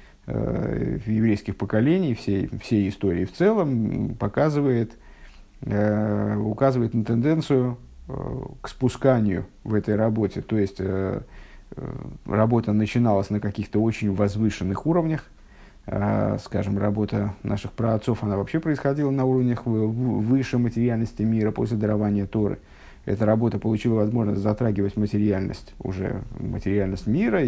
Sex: male